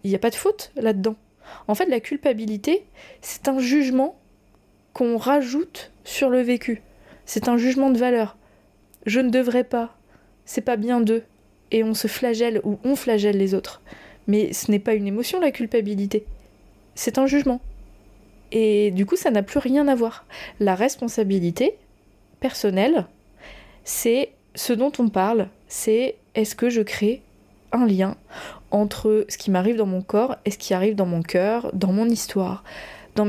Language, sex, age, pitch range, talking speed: French, female, 20-39, 195-250 Hz, 170 wpm